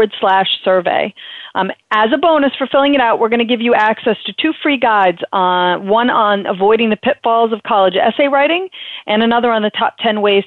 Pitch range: 195-255 Hz